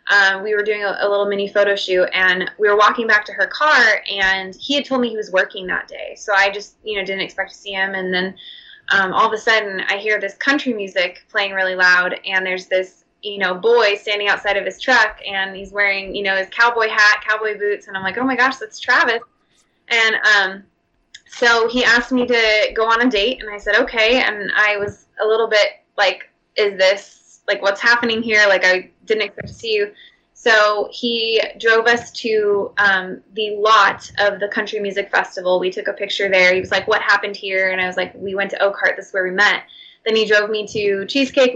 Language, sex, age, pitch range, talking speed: English, female, 20-39, 195-225 Hz, 230 wpm